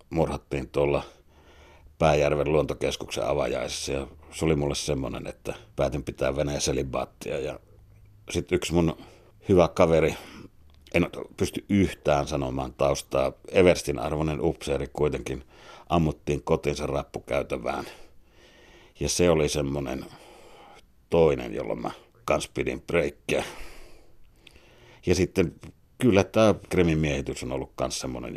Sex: male